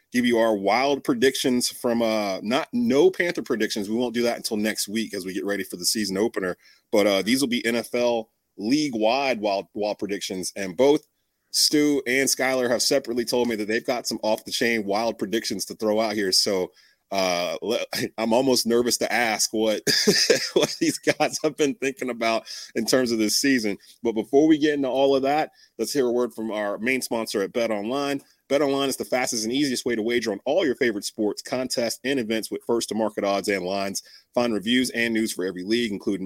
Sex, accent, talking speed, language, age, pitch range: male, American, 210 wpm, English, 30-49, 110-130 Hz